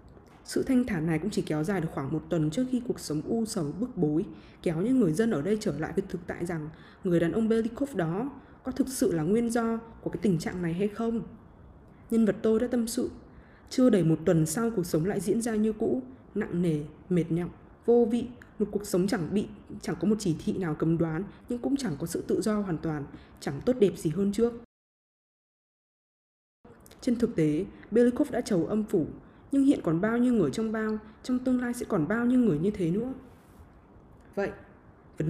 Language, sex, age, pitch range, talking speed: Vietnamese, female, 20-39, 165-230 Hz, 225 wpm